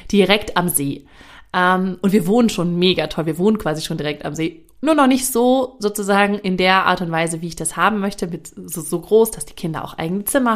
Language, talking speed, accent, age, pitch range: German, 235 wpm, German, 30-49, 170-225 Hz